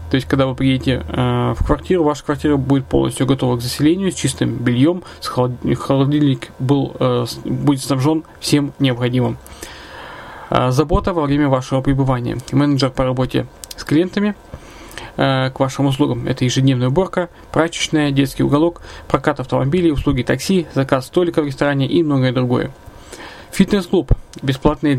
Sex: male